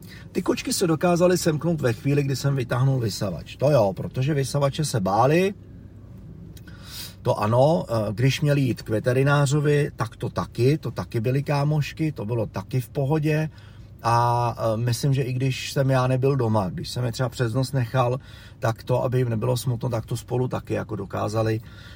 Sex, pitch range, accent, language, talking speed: male, 110-140 Hz, native, Czech, 170 wpm